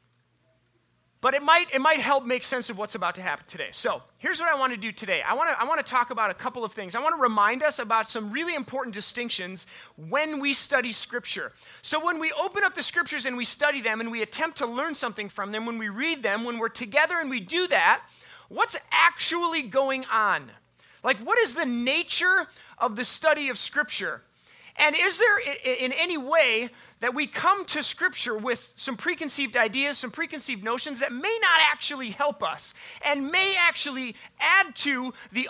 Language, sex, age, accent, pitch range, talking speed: English, male, 30-49, American, 225-305 Hz, 205 wpm